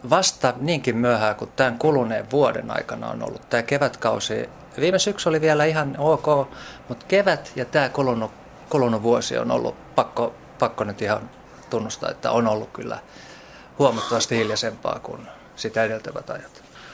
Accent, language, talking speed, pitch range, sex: native, Finnish, 150 wpm, 110-135 Hz, male